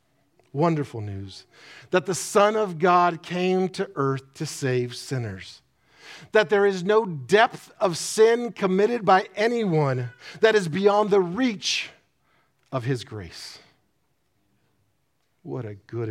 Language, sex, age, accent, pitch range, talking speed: English, male, 50-69, American, 130-180 Hz, 125 wpm